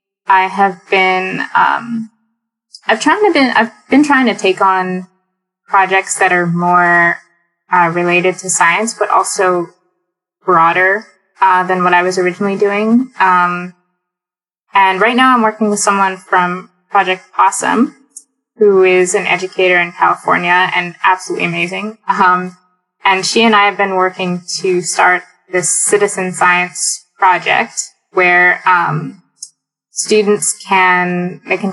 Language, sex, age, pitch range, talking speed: English, female, 20-39, 180-200 Hz, 140 wpm